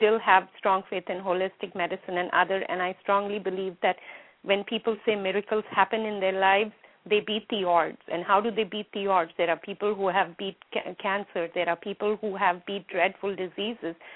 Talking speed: 210 wpm